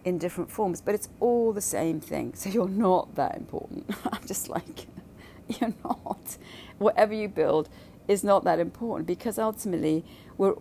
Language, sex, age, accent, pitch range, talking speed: English, female, 40-59, British, 145-180 Hz, 165 wpm